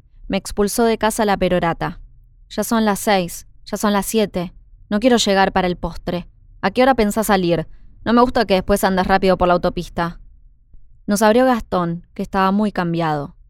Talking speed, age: 185 wpm, 20-39